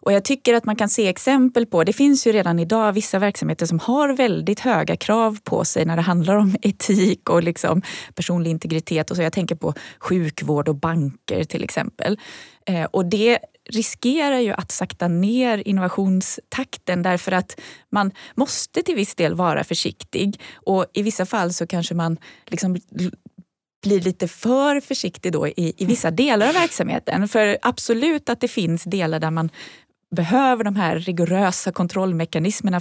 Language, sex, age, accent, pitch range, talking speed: Swedish, female, 20-39, native, 170-225 Hz, 160 wpm